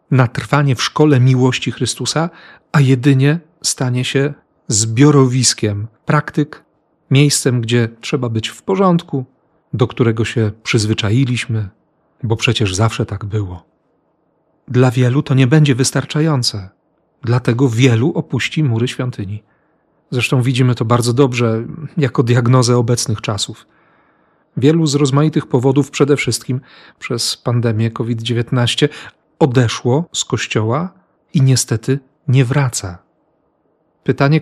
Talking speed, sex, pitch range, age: 110 wpm, male, 120-150 Hz, 40-59